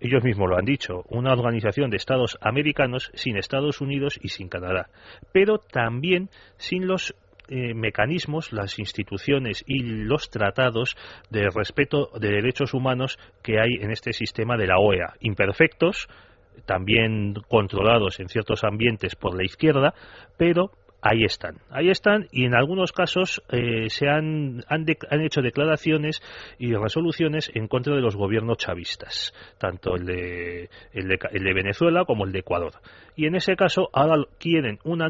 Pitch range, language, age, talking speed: 105-145 Hz, Spanish, 30-49, 160 wpm